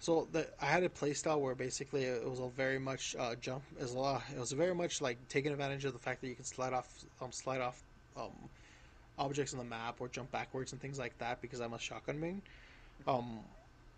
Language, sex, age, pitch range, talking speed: English, male, 20-39, 125-145 Hz, 230 wpm